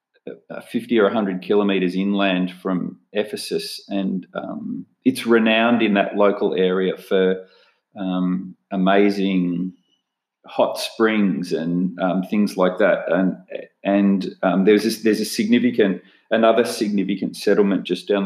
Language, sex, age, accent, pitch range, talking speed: English, male, 40-59, Australian, 95-120 Hz, 125 wpm